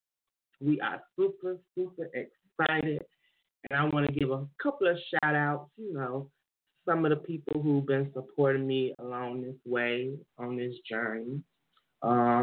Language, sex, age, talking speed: English, male, 20-39, 155 wpm